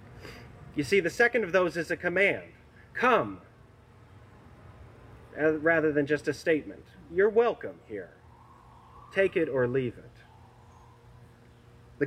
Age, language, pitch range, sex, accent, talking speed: 30-49, English, 120-180 Hz, male, American, 120 wpm